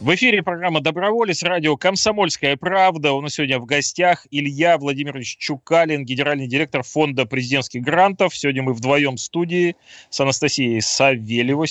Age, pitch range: 20-39, 120-145 Hz